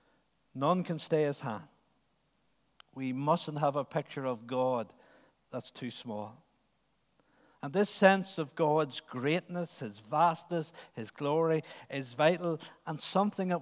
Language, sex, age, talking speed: English, male, 60-79, 130 wpm